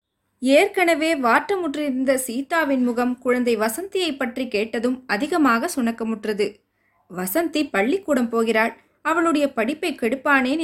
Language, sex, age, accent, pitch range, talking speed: Tamil, female, 20-39, native, 230-295 Hz, 90 wpm